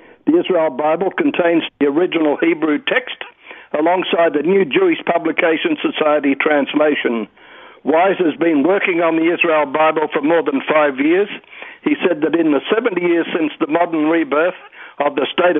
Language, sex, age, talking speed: English, male, 60-79, 160 wpm